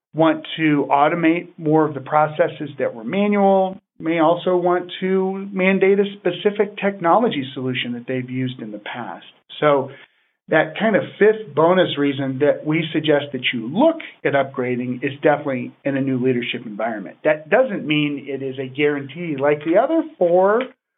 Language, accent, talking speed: English, American, 165 wpm